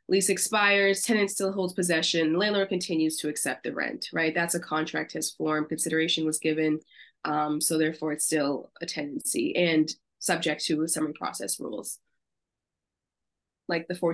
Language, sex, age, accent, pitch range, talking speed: English, female, 20-39, American, 160-195 Hz, 155 wpm